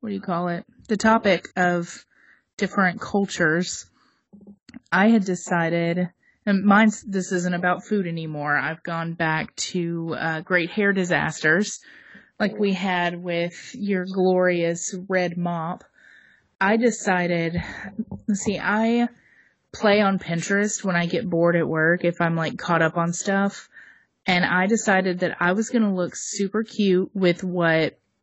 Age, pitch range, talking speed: 30-49, 175-205 Hz, 145 wpm